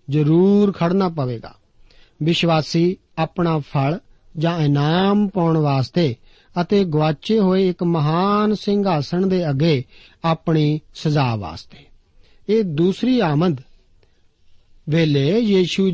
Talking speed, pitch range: 100 wpm, 145-195 Hz